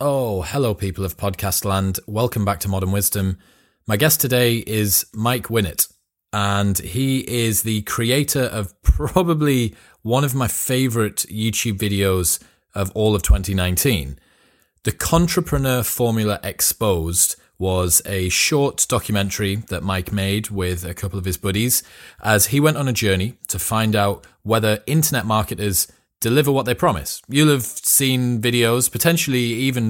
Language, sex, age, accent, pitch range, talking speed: English, male, 30-49, British, 100-130 Hz, 145 wpm